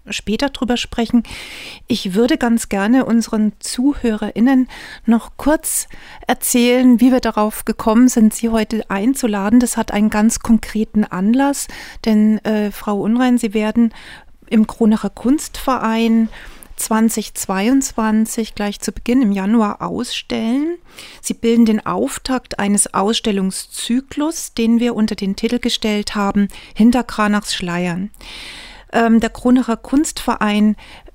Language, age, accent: German, 40-59, German